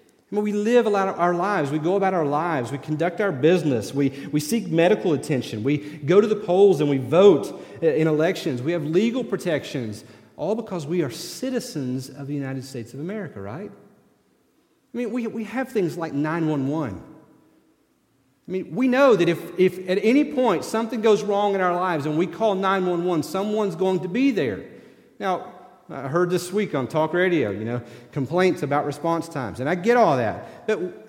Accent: American